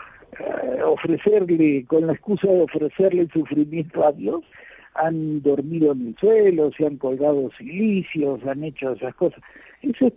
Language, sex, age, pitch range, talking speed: Spanish, male, 60-79, 145-185 Hz, 150 wpm